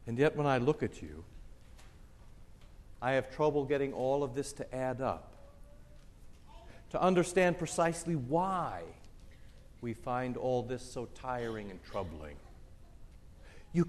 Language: English